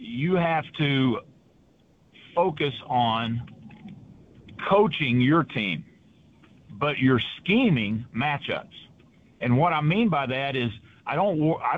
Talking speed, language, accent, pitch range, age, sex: 110 wpm, English, American, 120-155 Hz, 50-69, male